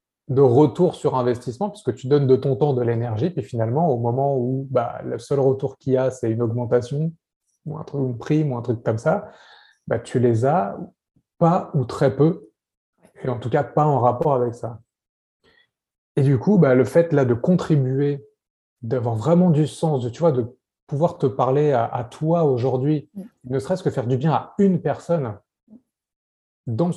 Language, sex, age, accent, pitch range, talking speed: French, male, 30-49, French, 125-160 Hz, 195 wpm